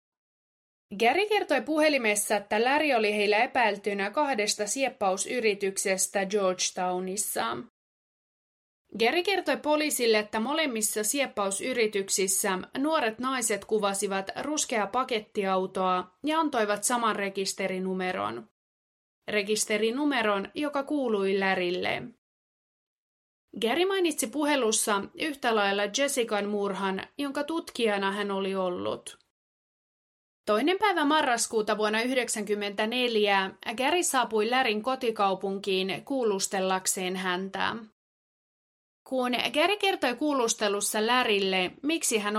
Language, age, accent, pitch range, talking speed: Finnish, 30-49, native, 195-260 Hz, 85 wpm